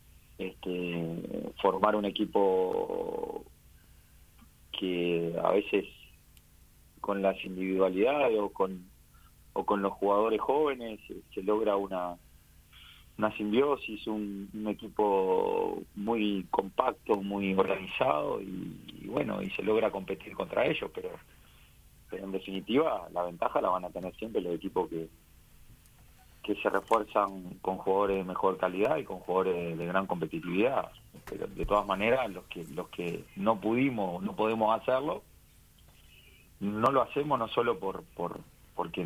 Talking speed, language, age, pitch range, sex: 135 wpm, Spanish, 40-59, 90-110 Hz, male